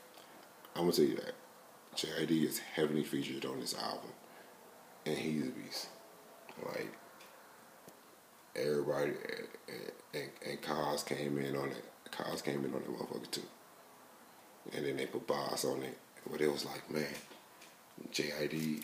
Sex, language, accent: male, English, American